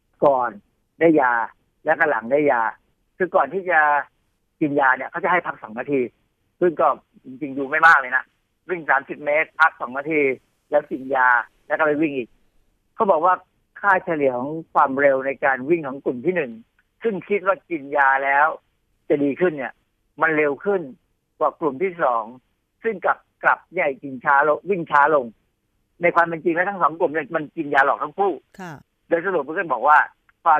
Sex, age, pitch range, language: male, 60-79, 135-180 Hz, Thai